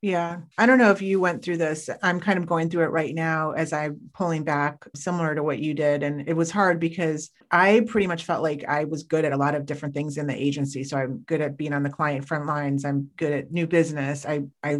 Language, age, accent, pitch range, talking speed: English, 40-59, American, 145-165 Hz, 265 wpm